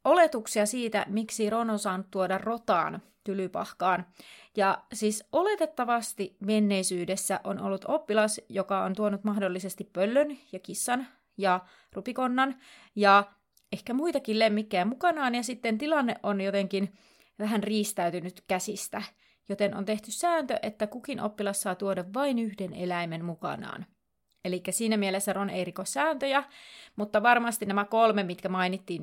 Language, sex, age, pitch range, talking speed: Finnish, female, 30-49, 185-230 Hz, 125 wpm